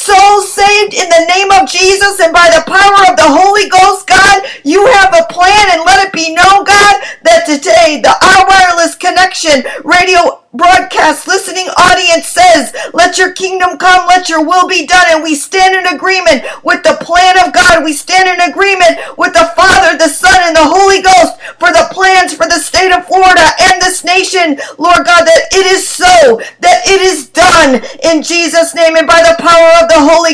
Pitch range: 320-360 Hz